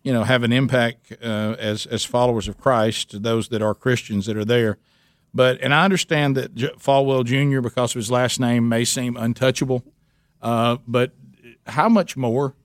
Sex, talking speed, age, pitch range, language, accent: male, 185 wpm, 50-69, 115-130 Hz, English, American